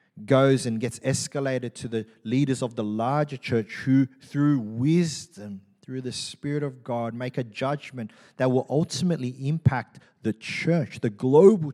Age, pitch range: 30-49, 145-220 Hz